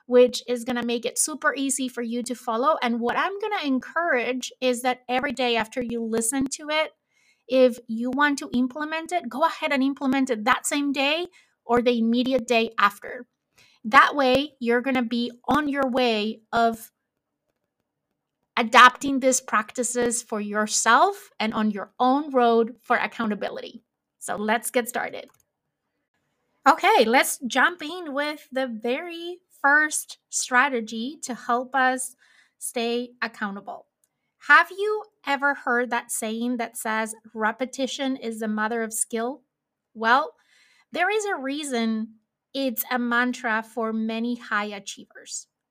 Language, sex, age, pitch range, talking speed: English, female, 30-49, 230-280 Hz, 145 wpm